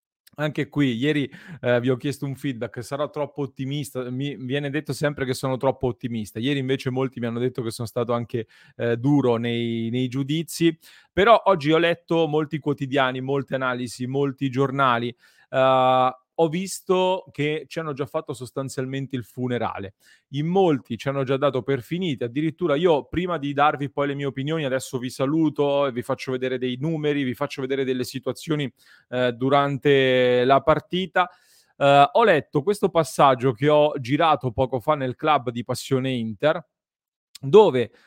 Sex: male